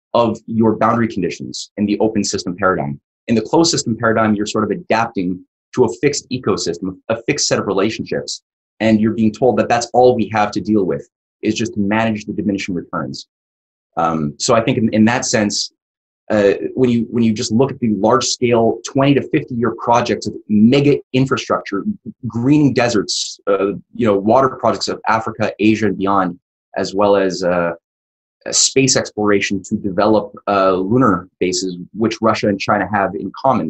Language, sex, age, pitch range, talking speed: English, male, 20-39, 95-115 Hz, 180 wpm